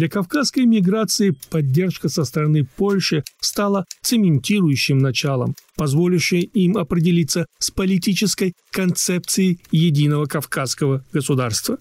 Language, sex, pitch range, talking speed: Russian, male, 145-190 Hz, 95 wpm